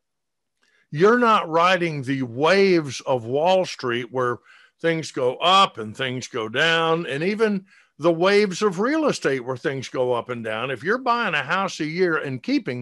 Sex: male